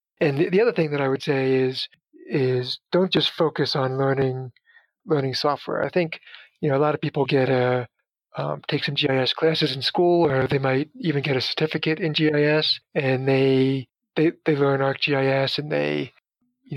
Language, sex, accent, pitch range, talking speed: English, male, American, 135-160 Hz, 185 wpm